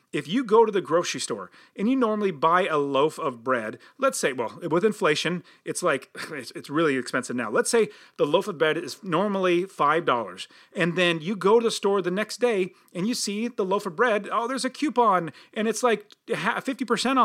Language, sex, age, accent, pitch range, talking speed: English, male, 30-49, American, 160-225 Hz, 210 wpm